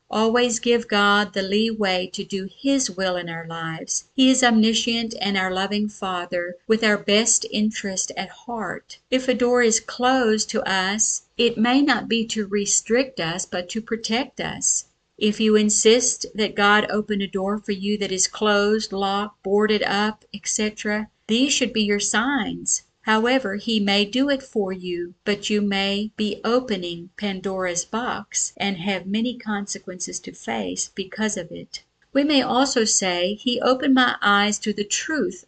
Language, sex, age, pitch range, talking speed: English, female, 50-69, 195-225 Hz, 165 wpm